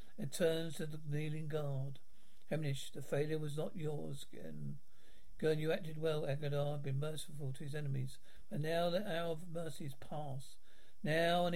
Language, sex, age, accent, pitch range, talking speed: English, male, 60-79, British, 145-170 Hz, 160 wpm